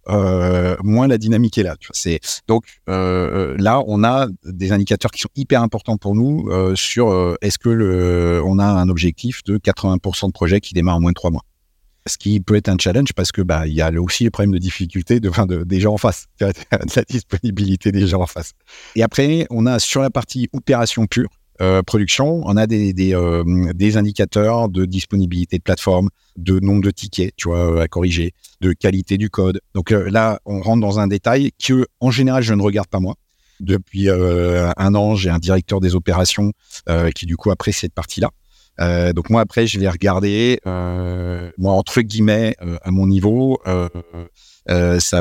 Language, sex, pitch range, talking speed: French, male, 90-105 Hz, 210 wpm